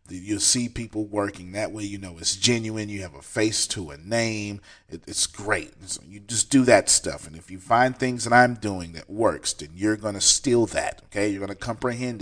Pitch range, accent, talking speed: 95-125 Hz, American, 220 wpm